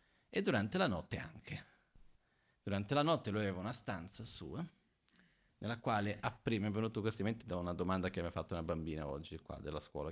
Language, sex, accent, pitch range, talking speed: Italian, male, native, 100-135 Hz, 195 wpm